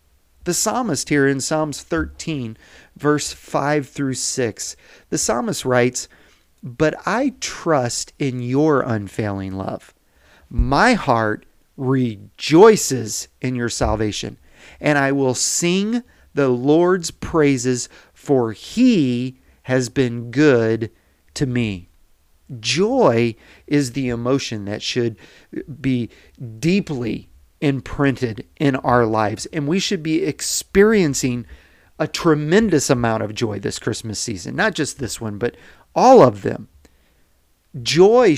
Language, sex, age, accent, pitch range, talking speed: English, male, 40-59, American, 115-155 Hz, 115 wpm